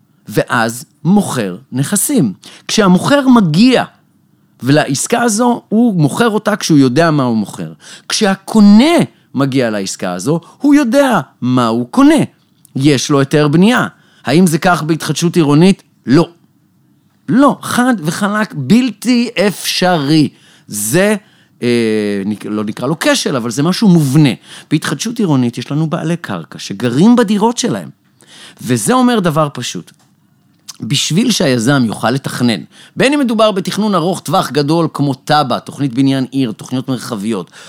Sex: male